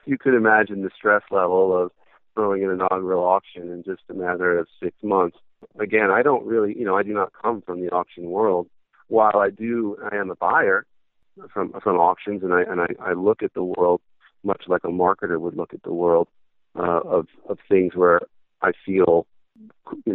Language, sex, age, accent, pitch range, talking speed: English, male, 40-59, American, 90-105 Hz, 200 wpm